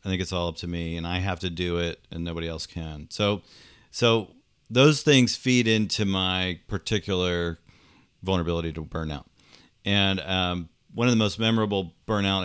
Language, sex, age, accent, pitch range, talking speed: English, male, 40-59, American, 90-115 Hz, 175 wpm